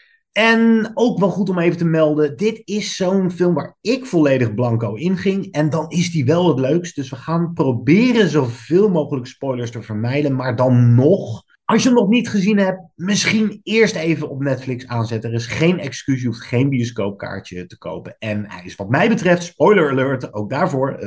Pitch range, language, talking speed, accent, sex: 115-180 Hz, Dutch, 200 wpm, Dutch, male